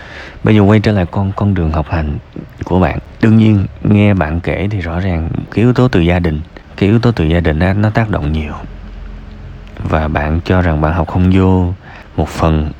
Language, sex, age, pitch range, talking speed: Vietnamese, male, 20-39, 80-105 Hz, 220 wpm